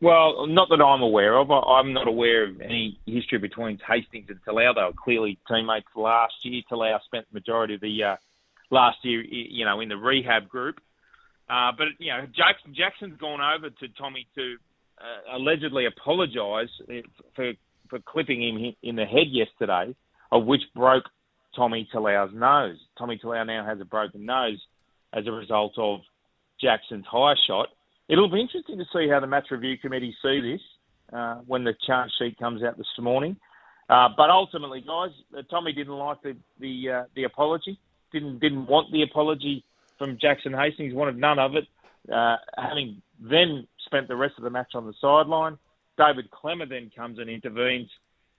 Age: 30-49